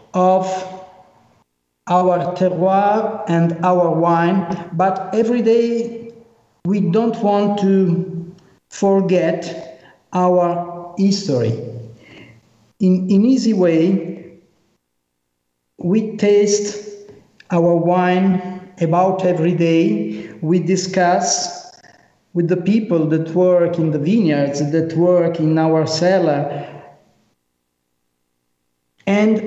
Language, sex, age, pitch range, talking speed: English, male, 50-69, 165-205 Hz, 90 wpm